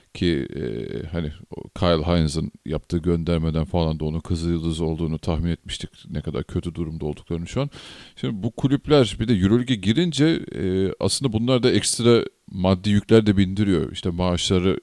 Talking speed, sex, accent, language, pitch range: 160 wpm, male, native, Turkish, 85-110 Hz